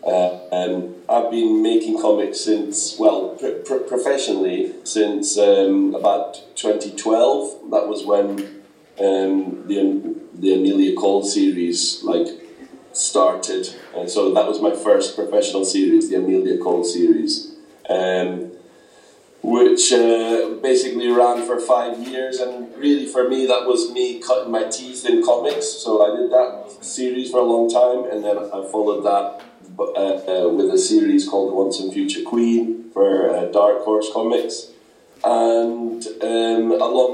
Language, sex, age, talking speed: English, male, 30-49, 145 wpm